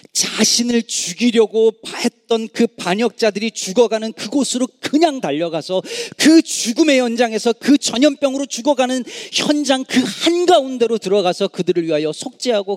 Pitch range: 150-240 Hz